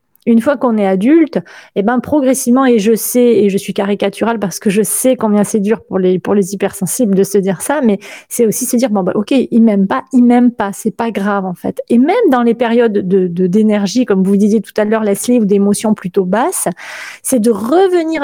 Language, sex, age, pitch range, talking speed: French, female, 30-49, 200-255 Hz, 245 wpm